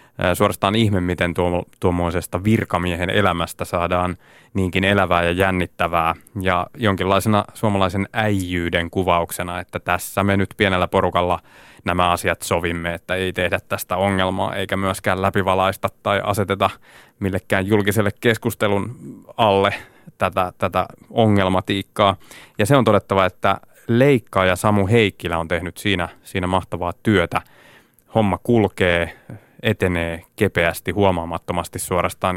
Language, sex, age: Finnish, male, 20-39